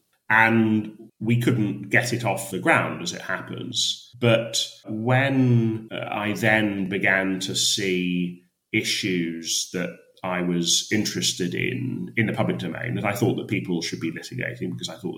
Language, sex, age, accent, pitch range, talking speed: English, male, 30-49, British, 85-115 Hz, 155 wpm